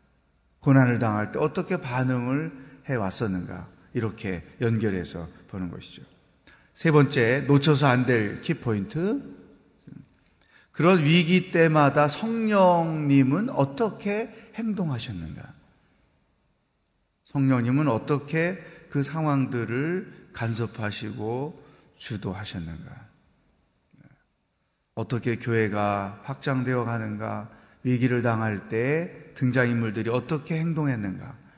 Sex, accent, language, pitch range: male, native, Korean, 115-155 Hz